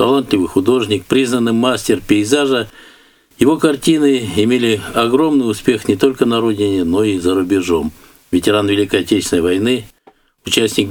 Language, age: Russian, 60-79